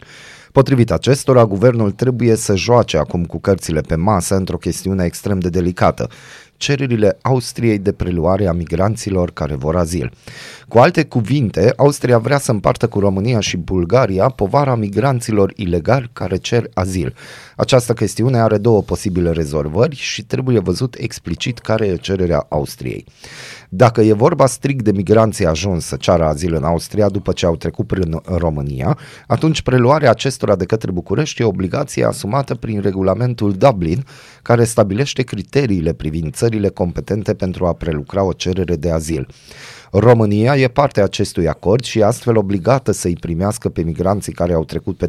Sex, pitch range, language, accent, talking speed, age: male, 90-125 Hz, Romanian, native, 155 wpm, 30-49